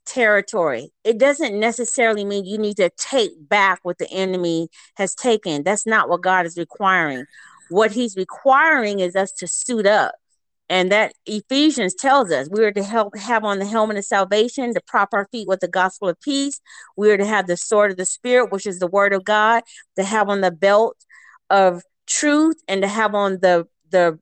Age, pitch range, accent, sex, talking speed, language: 40-59, 195-265 Hz, American, female, 200 wpm, English